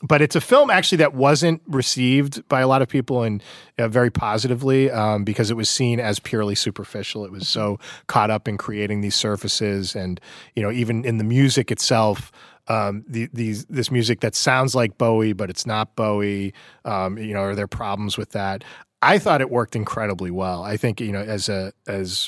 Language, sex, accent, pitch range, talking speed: English, male, American, 100-120 Hz, 205 wpm